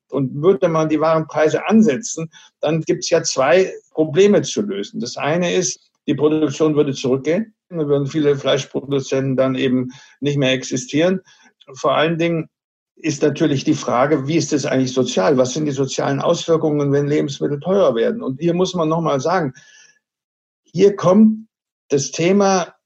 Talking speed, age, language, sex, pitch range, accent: 165 wpm, 60-79, German, male, 145-190 Hz, German